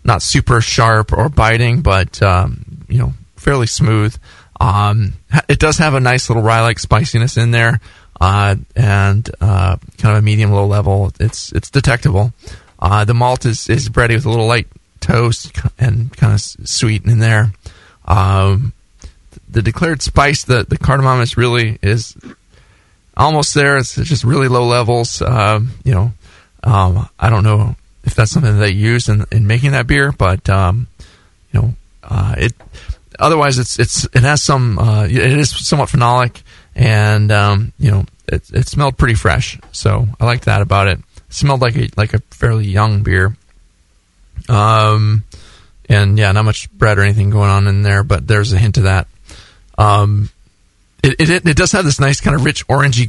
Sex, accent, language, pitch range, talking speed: male, American, English, 100-125 Hz, 175 wpm